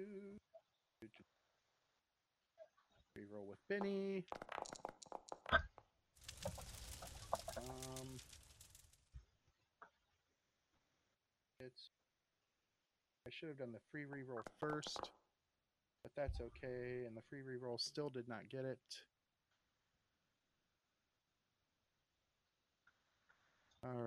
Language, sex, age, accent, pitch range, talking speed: English, male, 40-59, American, 115-170 Hz, 65 wpm